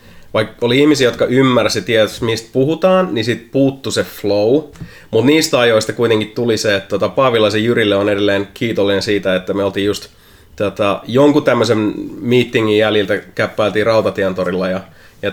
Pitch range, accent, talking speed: 105-135 Hz, native, 155 wpm